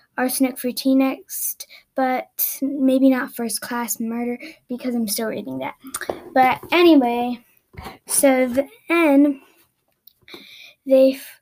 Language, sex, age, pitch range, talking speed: English, female, 10-29, 245-285 Hz, 105 wpm